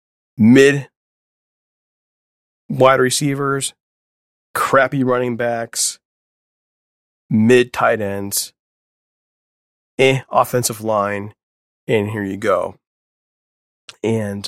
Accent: American